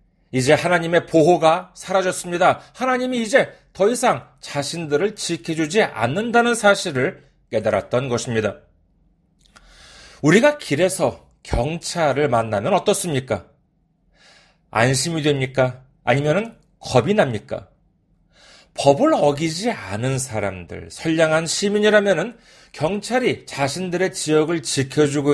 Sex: male